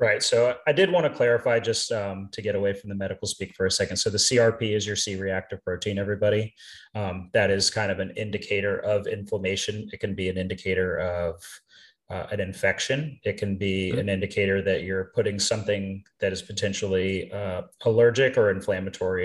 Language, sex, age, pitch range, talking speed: English, male, 30-49, 95-110 Hz, 190 wpm